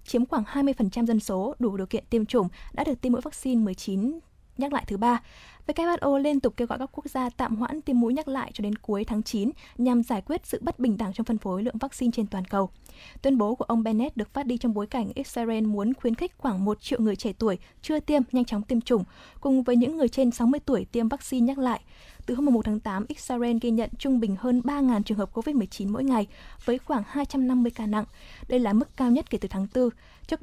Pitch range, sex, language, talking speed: 220-265 Hz, female, Vietnamese, 245 wpm